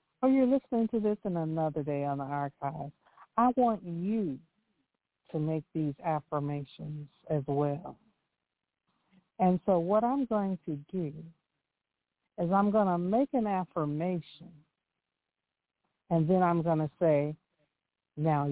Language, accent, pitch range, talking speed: English, American, 150-195 Hz, 135 wpm